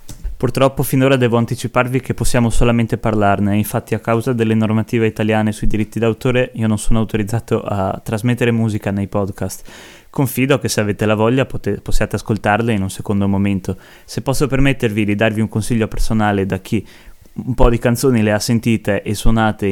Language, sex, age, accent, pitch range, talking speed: Italian, male, 20-39, native, 105-115 Hz, 175 wpm